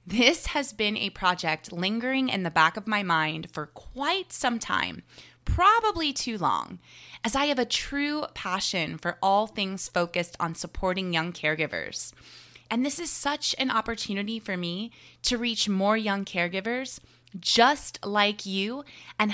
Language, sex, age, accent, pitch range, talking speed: English, female, 20-39, American, 180-255 Hz, 155 wpm